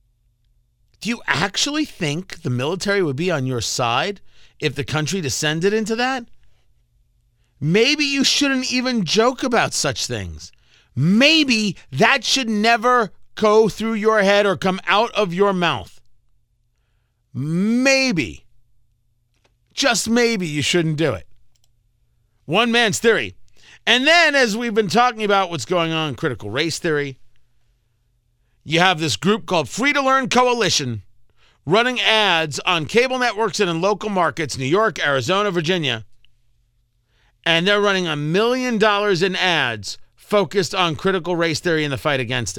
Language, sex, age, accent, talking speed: English, male, 40-59, American, 145 wpm